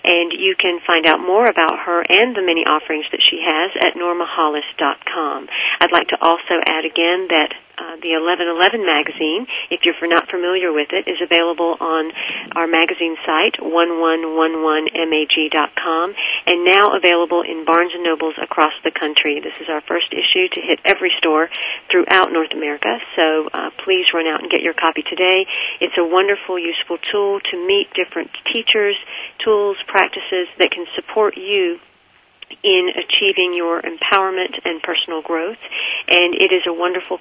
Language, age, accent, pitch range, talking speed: English, 40-59, American, 160-205 Hz, 160 wpm